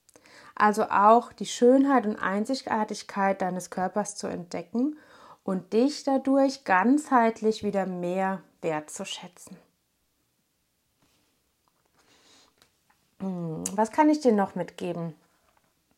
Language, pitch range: German, 195-250 Hz